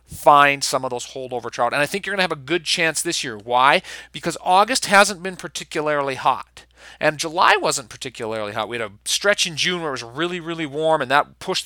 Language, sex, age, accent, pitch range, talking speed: English, male, 40-59, American, 120-170 Hz, 225 wpm